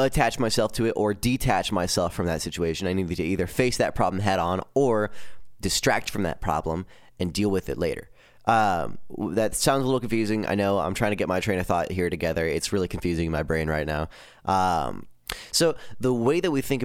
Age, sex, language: 20-39, male, English